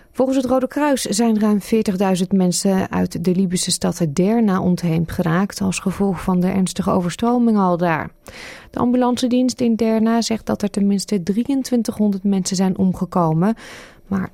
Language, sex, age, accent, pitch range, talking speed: Dutch, female, 20-39, Dutch, 180-225 Hz, 150 wpm